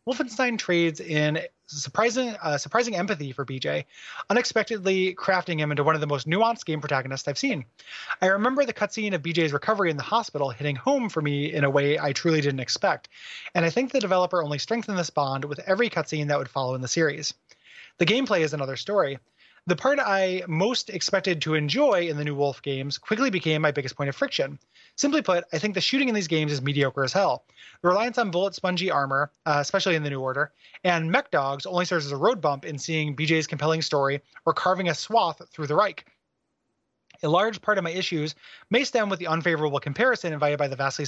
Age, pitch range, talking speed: 30-49, 145-195 Hz, 215 wpm